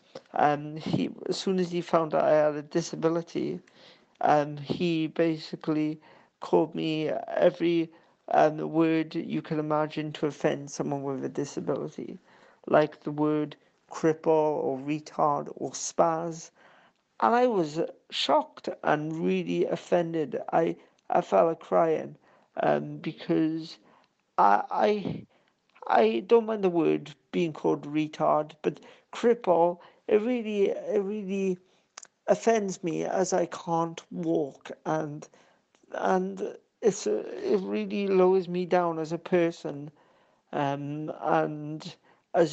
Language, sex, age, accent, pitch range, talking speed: English, male, 50-69, British, 155-185 Hz, 125 wpm